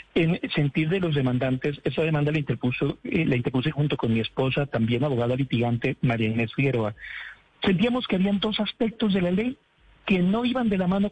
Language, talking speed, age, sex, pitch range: Spanish, 195 wpm, 50-69, male, 140-195 Hz